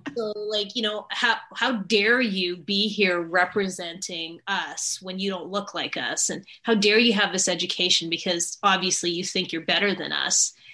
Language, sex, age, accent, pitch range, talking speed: English, female, 30-49, American, 180-230 Hz, 185 wpm